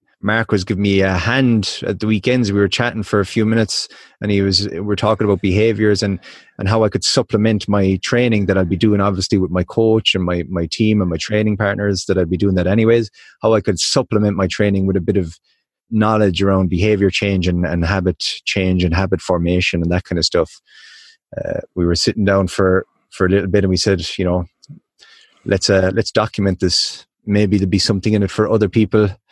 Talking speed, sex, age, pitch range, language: 225 wpm, male, 20-39, 95-115 Hz, English